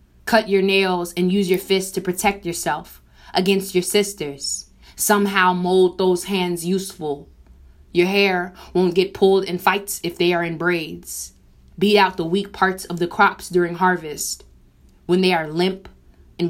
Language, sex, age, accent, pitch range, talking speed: English, female, 20-39, American, 150-190 Hz, 165 wpm